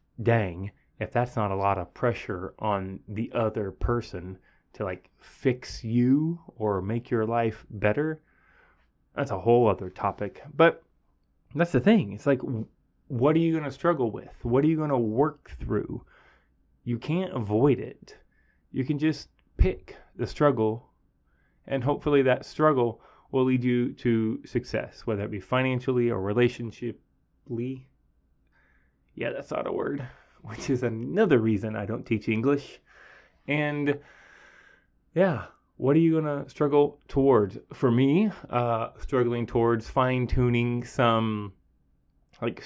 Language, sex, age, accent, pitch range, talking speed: English, male, 20-39, American, 105-140 Hz, 140 wpm